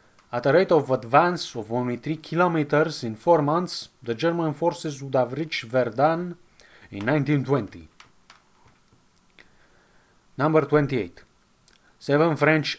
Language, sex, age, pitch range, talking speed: English, male, 30-49, 115-150 Hz, 115 wpm